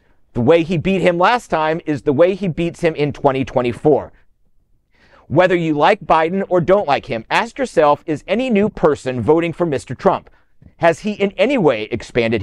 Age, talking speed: 50-69, 190 wpm